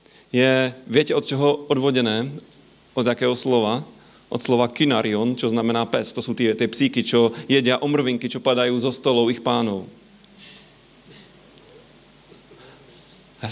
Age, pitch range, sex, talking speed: 40-59, 115-140 Hz, male, 125 wpm